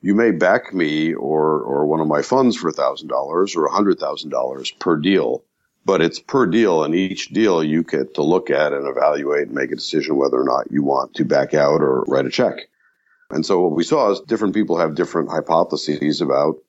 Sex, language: male, English